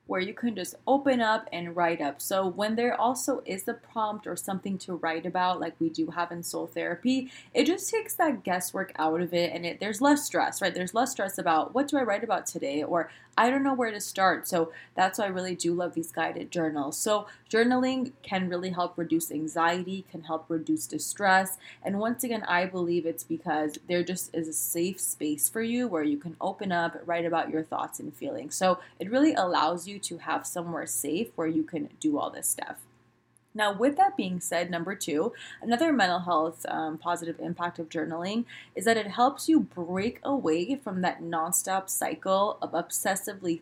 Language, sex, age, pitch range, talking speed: English, female, 20-39, 165-220 Hz, 205 wpm